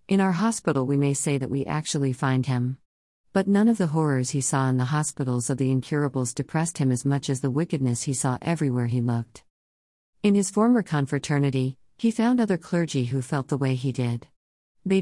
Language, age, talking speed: Malayalam, 50-69, 205 wpm